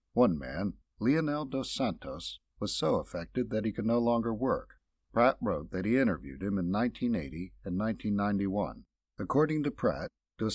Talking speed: 160 wpm